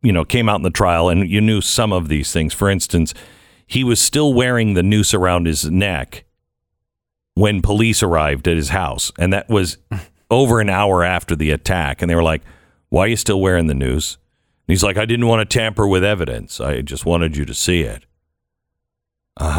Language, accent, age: English, American, 50-69